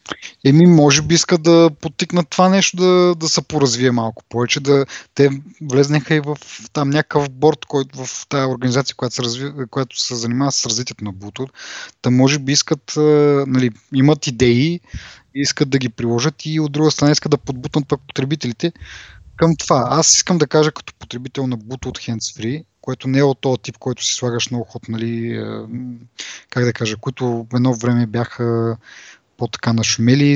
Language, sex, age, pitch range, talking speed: Bulgarian, male, 20-39, 125-155 Hz, 170 wpm